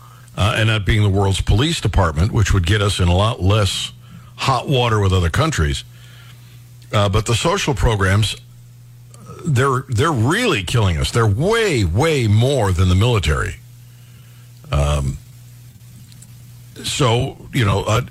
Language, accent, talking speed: English, American, 140 wpm